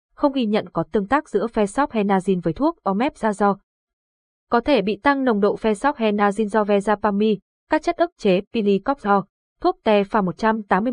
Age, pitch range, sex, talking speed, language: 20-39, 195-235 Hz, female, 170 wpm, Vietnamese